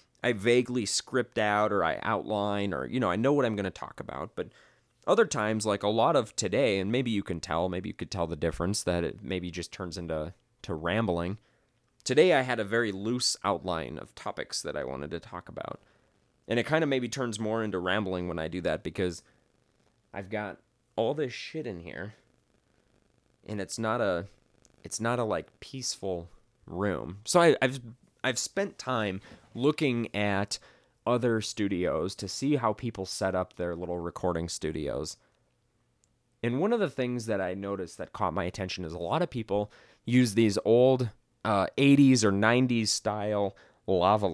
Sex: male